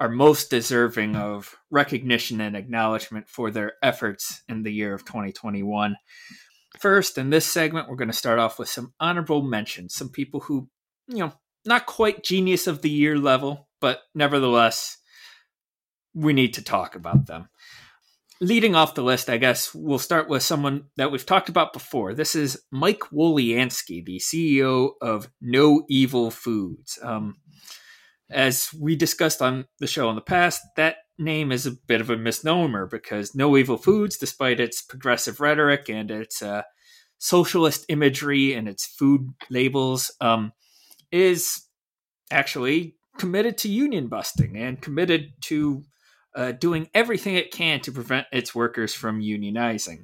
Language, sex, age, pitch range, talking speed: English, male, 30-49, 115-160 Hz, 155 wpm